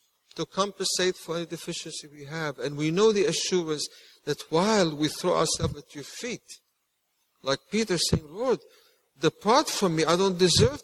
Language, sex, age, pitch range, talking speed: English, male, 60-79, 130-175 Hz, 165 wpm